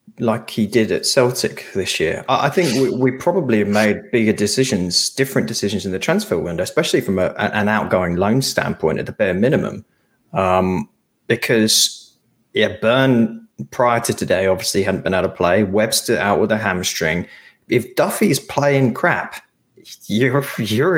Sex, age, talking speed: male, 20-39, 165 wpm